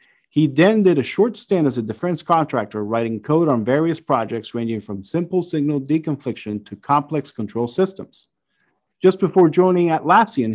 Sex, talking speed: male, 160 wpm